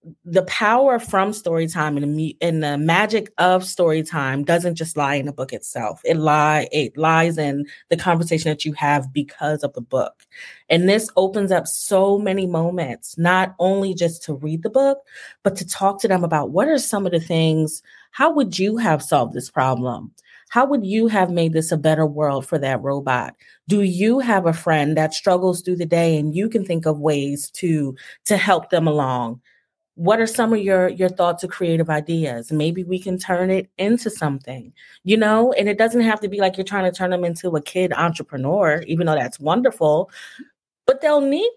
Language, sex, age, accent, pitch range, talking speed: English, female, 30-49, American, 155-215 Hz, 200 wpm